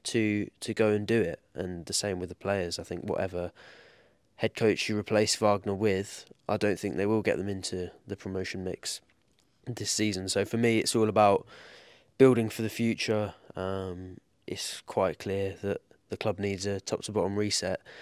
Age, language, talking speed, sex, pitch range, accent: 20-39, English, 190 wpm, male, 95-105 Hz, British